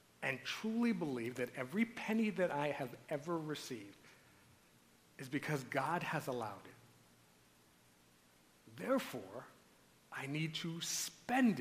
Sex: male